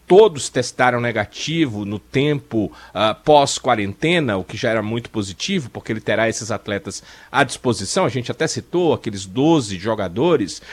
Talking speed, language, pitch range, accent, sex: 145 wpm, Portuguese, 115-155 Hz, Brazilian, male